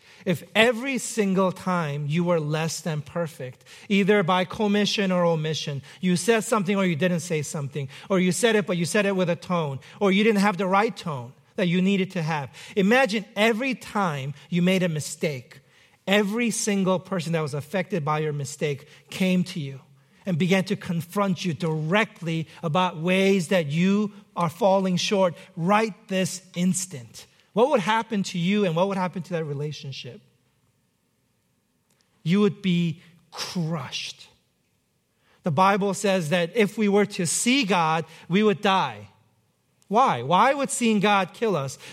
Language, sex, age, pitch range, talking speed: English, male, 40-59, 165-210 Hz, 165 wpm